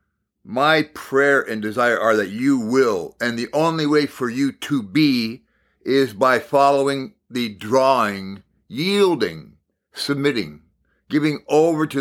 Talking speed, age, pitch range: 130 wpm, 50-69, 115-150 Hz